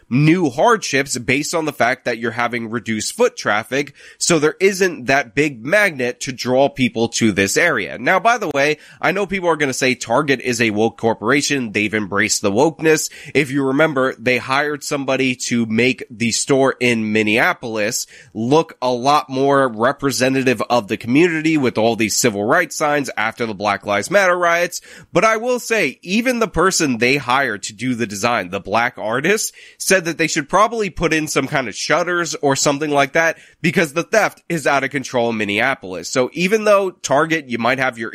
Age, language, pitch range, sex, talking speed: 20-39, English, 120-160 Hz, male, 195 wpm